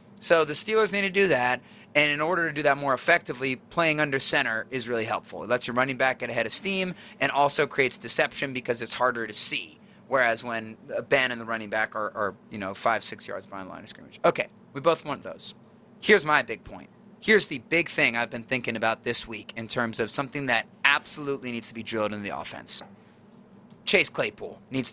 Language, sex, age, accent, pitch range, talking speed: English, male, 30-49, American, 120-160 Hz, 220 wpm